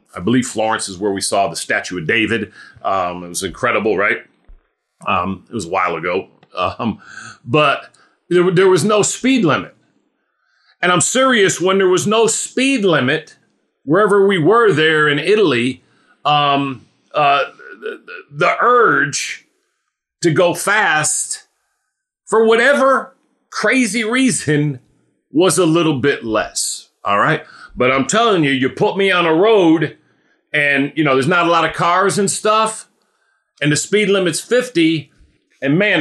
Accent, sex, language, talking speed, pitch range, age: American, male, English, 155 wpm, 145-205 Hz, 40-59